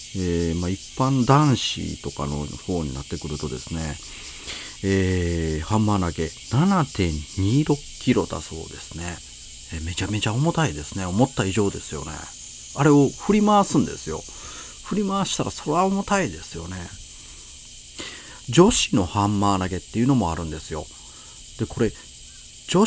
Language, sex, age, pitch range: Japanese, male, 40-59, 85-145 Hz